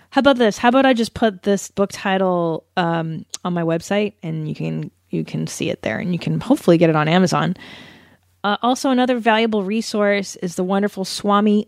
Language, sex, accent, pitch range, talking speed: English, female, American, 175-220 Hz, 205 wpm